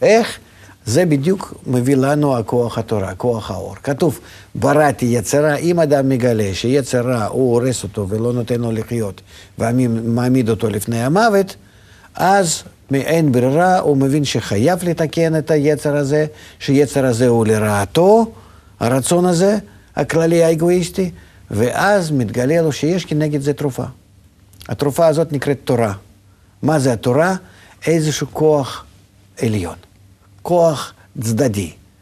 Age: 50-69